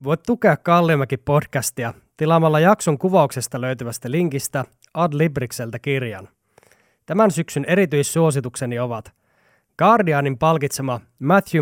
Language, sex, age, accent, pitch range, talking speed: English, male, 20-39, Finnish, 120-160 Hz, 95 wpm